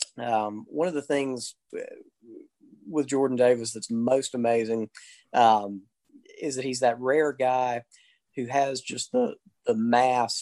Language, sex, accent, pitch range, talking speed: English, male, American, 115-135 Hz, 140 wpm